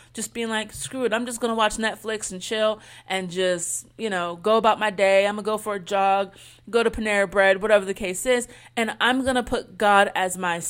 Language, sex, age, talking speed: English, female, 30-49, 225 wpm